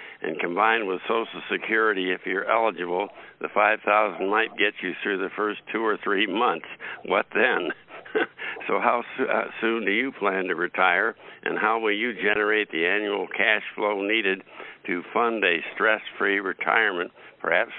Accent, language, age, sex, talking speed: American, English, 60-79, male, 160 wpm